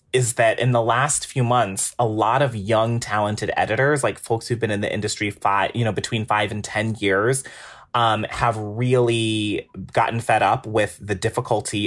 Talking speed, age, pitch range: 185 wpm, 30-49, 100-120 Hz